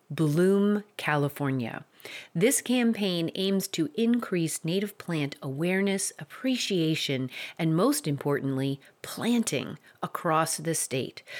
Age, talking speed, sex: 40-59, 95 wpm, female